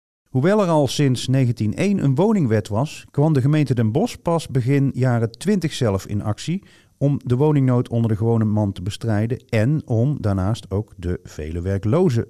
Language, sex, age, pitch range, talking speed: Dutch, male, 40-59, 100-155 Hz, 175 wpm